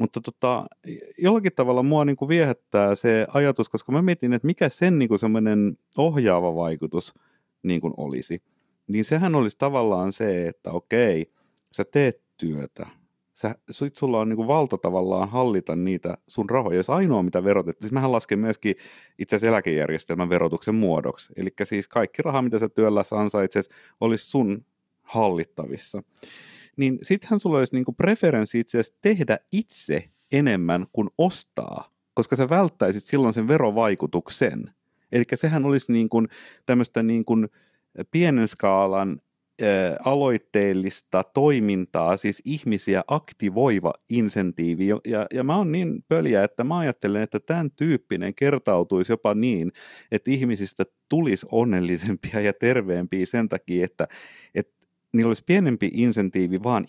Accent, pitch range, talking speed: native, 95-140 Hz, 135 wpm